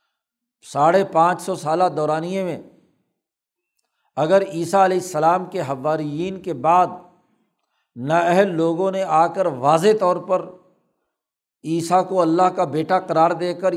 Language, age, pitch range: Urdu, 60-79, 165-195 Hz